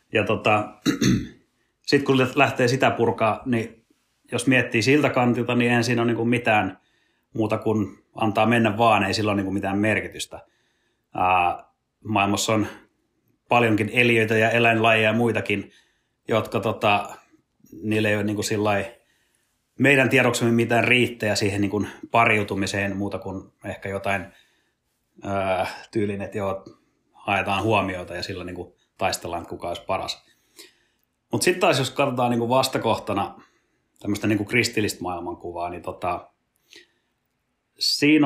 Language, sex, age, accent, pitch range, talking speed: Finnish, male, 30-49, native, 100-120 Hz, 130 wpm